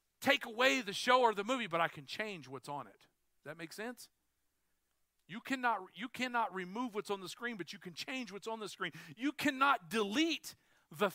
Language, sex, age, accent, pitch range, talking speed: English, male, 40-59, American, 185-260 Hz, 210 wpm